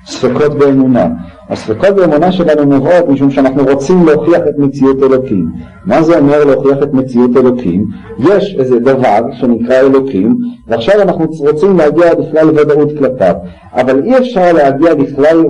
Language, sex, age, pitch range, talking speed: Hebrew, male, 50-69, 135-175 Hz, 145 wpm